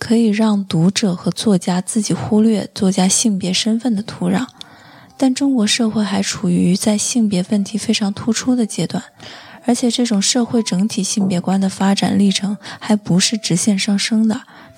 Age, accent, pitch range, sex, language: 20-39, native, 190-230 Hz, female, Chinese